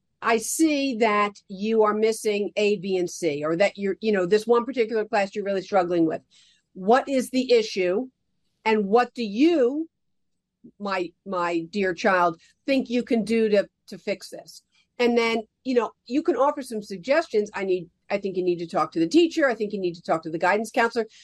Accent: American